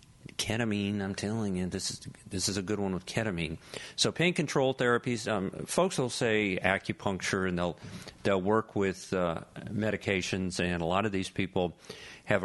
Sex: male